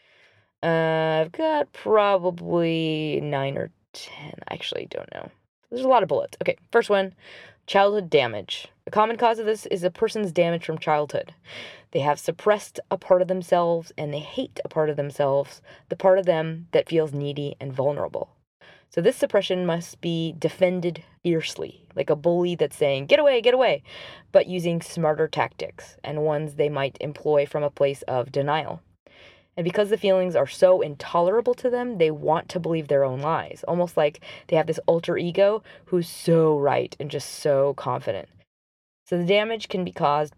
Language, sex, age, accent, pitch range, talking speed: English, female, 20-39, American, 145-185 Hz, 180 wpm